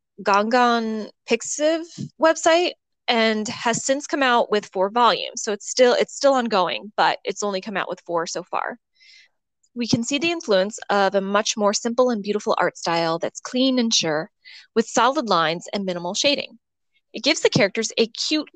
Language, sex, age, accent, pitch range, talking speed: English, female, 20-39, American, 200-265 Hz, 180 wpm